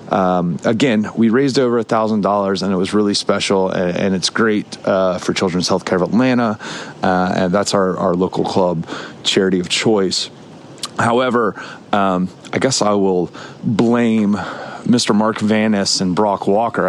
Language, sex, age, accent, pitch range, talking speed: English, male, 30-49, American, 95-115 Hz, 165 wpm